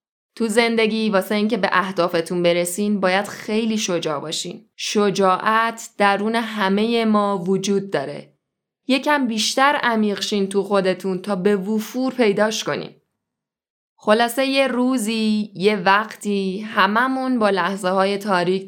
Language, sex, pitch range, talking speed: Persian, female, 180-220 Hz, 120 wpm